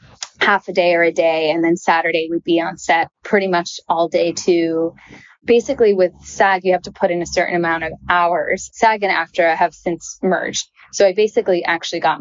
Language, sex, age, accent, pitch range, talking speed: English, female, 20-39, American, 165-190 Hz, 205 wpm